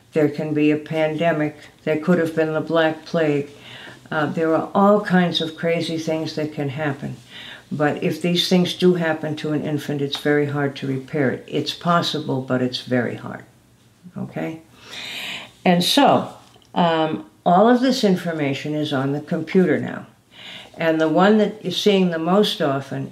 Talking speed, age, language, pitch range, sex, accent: 170 wpm, 60-79, English, 145-175 Hz, female, American